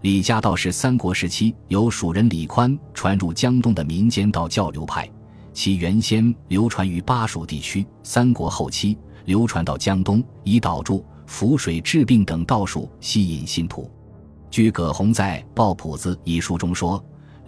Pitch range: 85-110 Hz